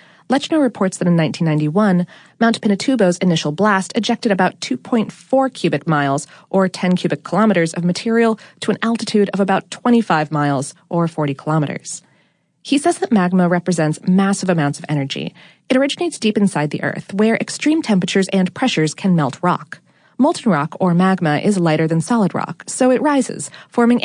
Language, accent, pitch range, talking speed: English, American, 170-235 Hz, 165 wpm